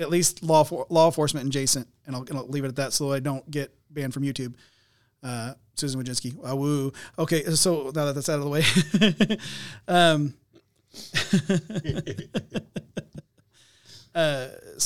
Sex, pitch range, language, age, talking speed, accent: male, 115-145 Hz, English, 30-49, 155 wpm, American